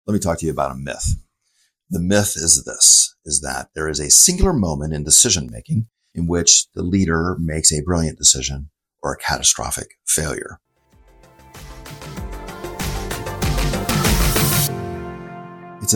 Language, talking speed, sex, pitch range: English, 130 wpm, male, 75-90 Hz